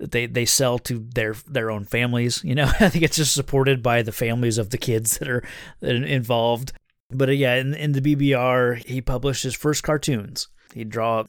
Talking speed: 195 wpm